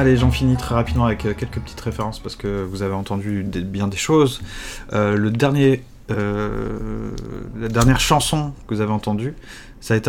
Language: French